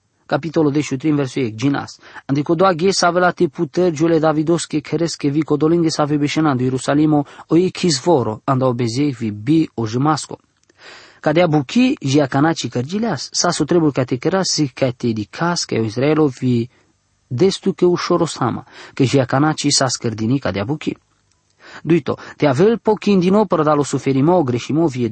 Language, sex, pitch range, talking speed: English, male, 130-170 Hz, 280 wpm